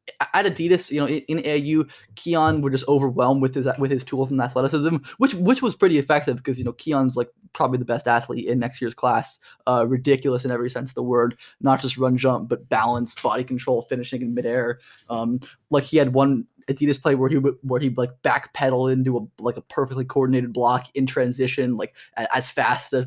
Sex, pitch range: male, 125-145 Hz